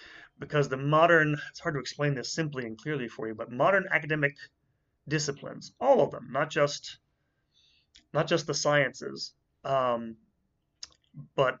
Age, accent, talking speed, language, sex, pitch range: 30-49, American, 145 wpm, English, male, 120-150 Hz